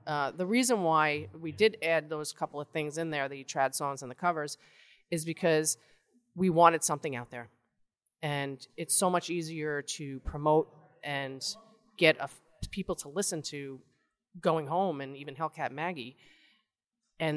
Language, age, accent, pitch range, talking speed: English, 30-49, American, 135-165 Hz, 165 wpm